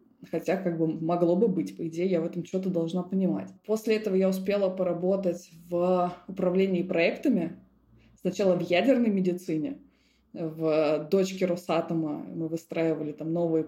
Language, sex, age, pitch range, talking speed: Russian, female, 20-39, 170-210 Hz, 145 wpm